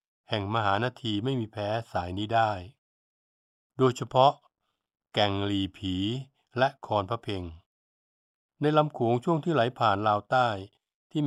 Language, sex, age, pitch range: Thai, male, 60-79, 100-130 Hz